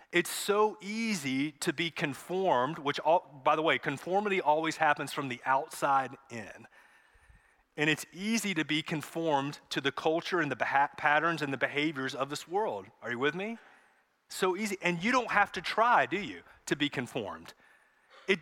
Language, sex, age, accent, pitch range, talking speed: English, male, 30-49, American, 145-190 Hz, 175 wpm